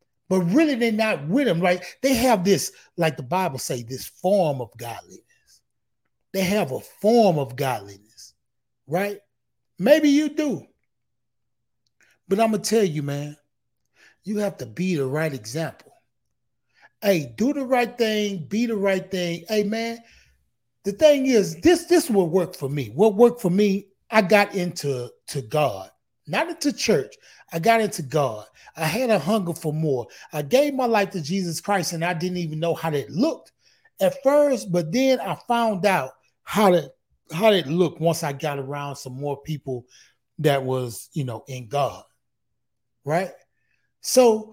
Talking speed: 165 wpm